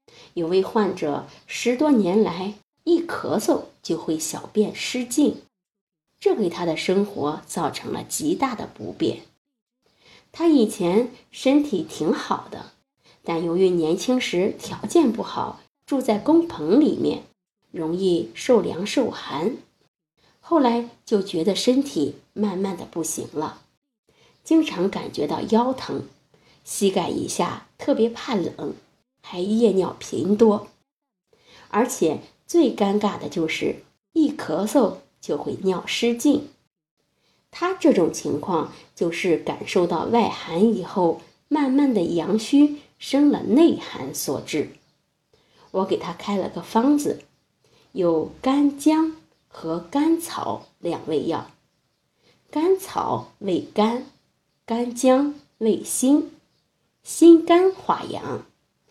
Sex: female